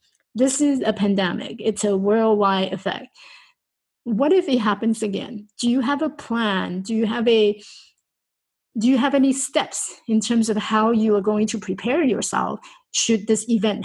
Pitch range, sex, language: 190-235 Hz, female, English